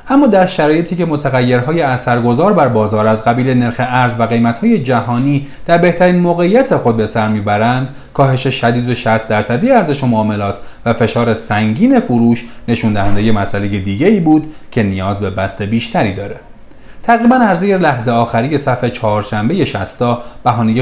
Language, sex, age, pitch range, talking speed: Persian, male, 30-49, 110-150 Hz, 155 wpm